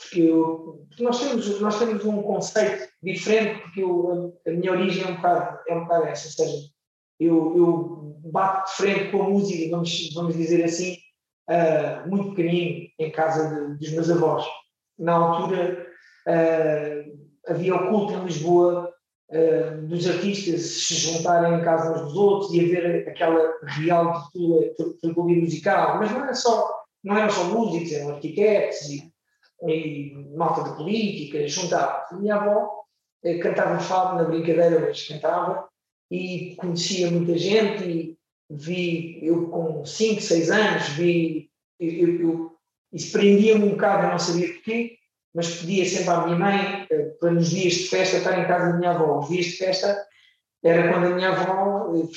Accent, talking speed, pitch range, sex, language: Portuguese, 165 wpm, 165-190 Hz, male, Portuguese